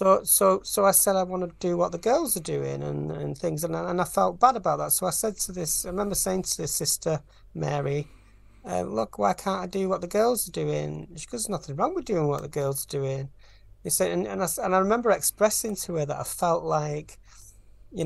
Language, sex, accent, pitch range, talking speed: English, male, British, 130-185 Hz, 245 wpm